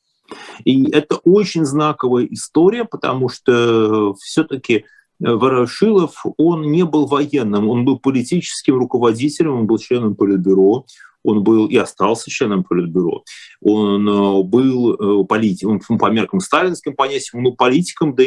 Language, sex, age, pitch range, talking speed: Russian, male, 30-49, 105-150 Hz, 120 wpm